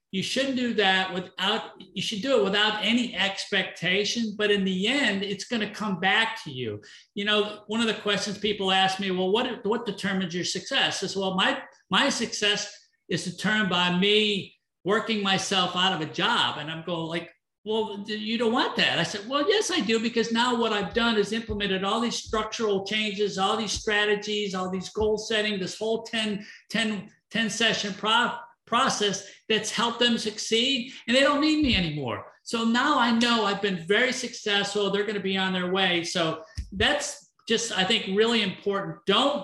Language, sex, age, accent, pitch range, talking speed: English, male, 50-69, American, 190-225 Hz, 190 wpm